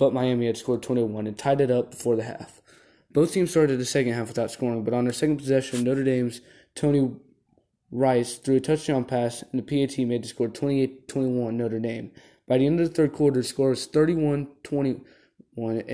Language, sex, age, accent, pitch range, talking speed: English, male, 20-39, American, 120-140 Hz, 200 wpm